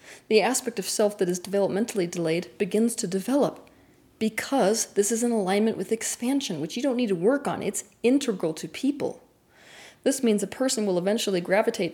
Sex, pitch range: female, 180-220 Hz